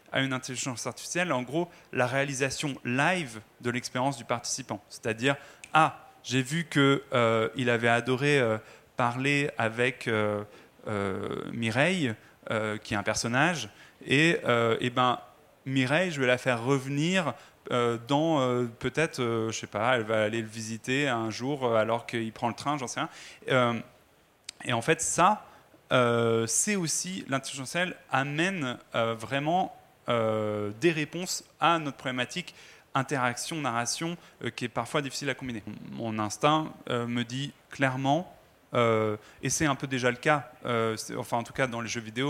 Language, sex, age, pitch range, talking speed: French, male, 30-49, 115-145 Hz, 165 wpm